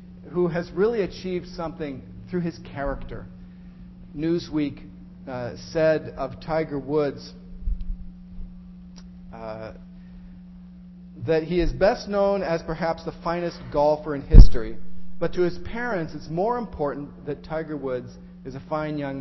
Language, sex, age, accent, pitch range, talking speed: English, male, 40-59, American, 145-180 Hz, 130 wpm